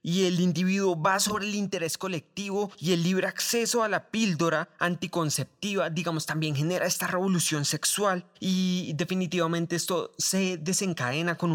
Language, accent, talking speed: English, Colombian, 145 wpm